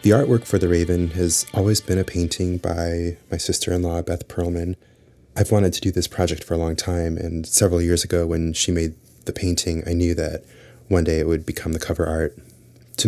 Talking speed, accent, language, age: 210 wpm, American, English, 30-49